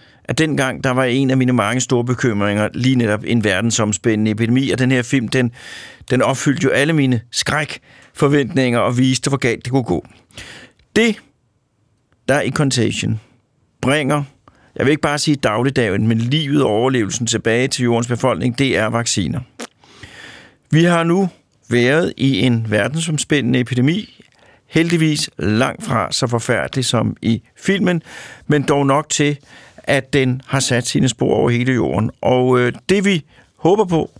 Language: Danish